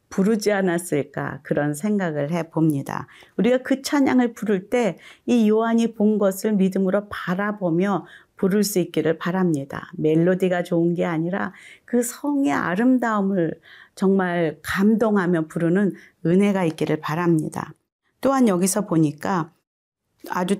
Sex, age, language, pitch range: female, 40-59, Korean, 170-225 Hz